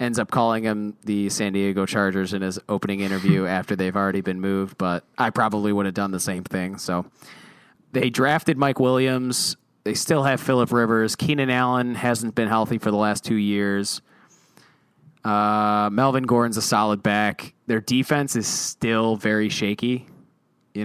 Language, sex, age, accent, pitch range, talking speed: English, male, 20-39, American, 100-125 Hz, 170 wpm